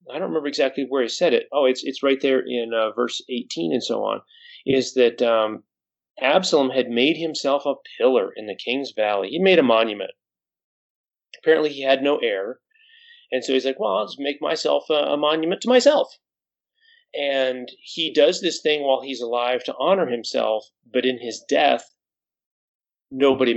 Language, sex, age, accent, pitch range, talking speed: English, male, 30-49, American, 125-160 Hz, 185 wpm